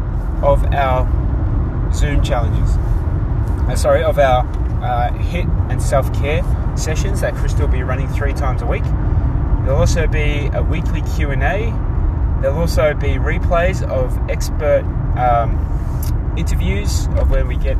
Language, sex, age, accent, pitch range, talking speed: English, male, 20-39, Australian, 75-120 Hz, 130 wpm